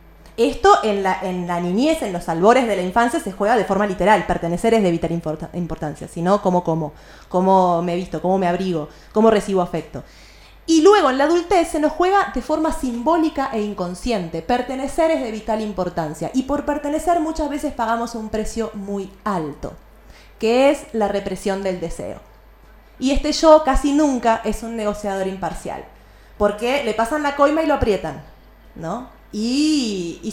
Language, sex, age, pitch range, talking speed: Spanish, female, 30-49, 180-265 Hz, 170 wpm